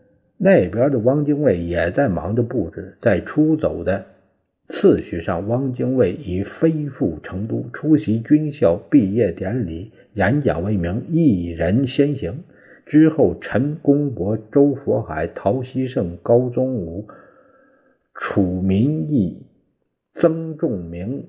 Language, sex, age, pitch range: Chinese, male, 50-69, 100-140 Hz